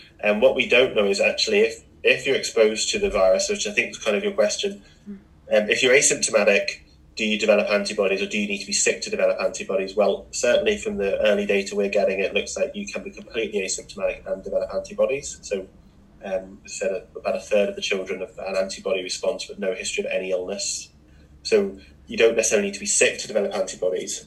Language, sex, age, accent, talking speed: English, male, 20-39, British, 220 wpm